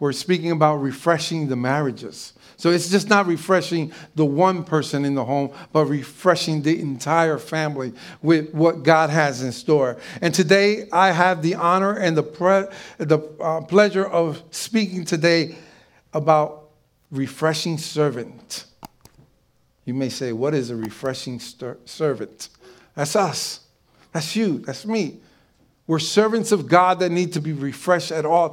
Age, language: 50-69, English